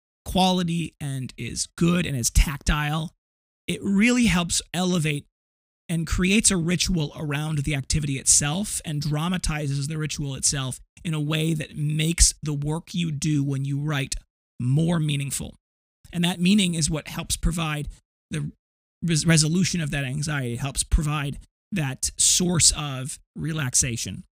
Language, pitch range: English, 140-170 Hz